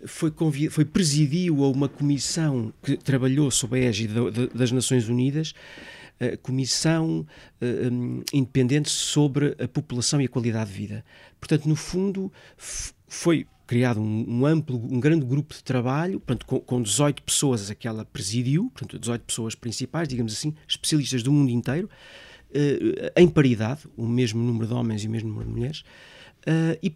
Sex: male